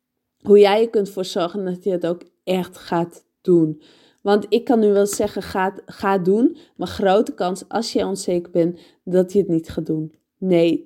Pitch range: 170-205 Hz